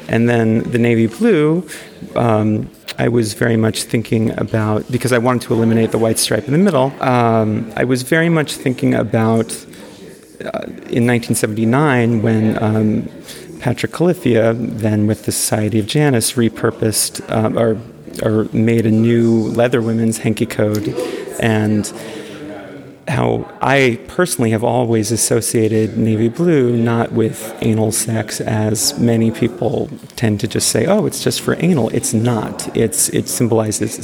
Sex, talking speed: male, 150 wpm